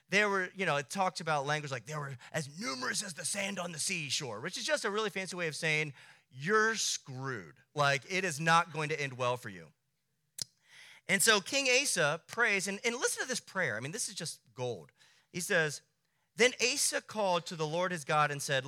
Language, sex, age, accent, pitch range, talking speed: English, male, 30-49, American, 135-195 Hz, 220 wpm